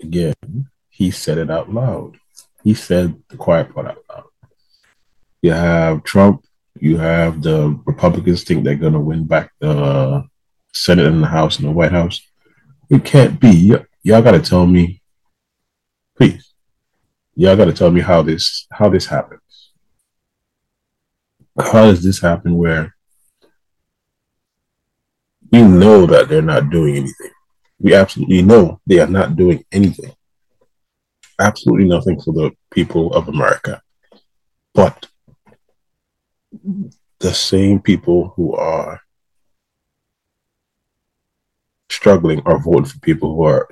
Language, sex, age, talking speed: English, male, 30-49, 130 wpm